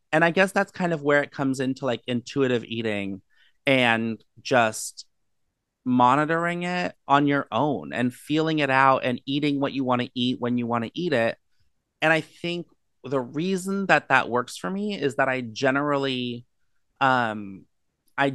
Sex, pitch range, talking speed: male, 115-145 Hz, 175 wpm